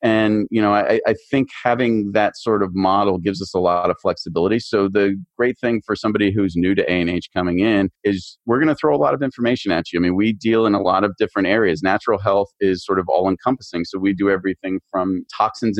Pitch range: 90-110 Hz